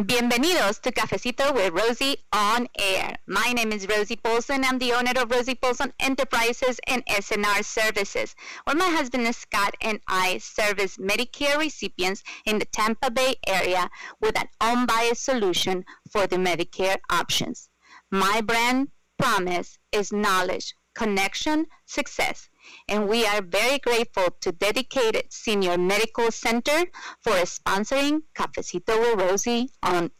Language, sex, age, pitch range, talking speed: English, female, 30-49, 210-265 Hz, 135 wpm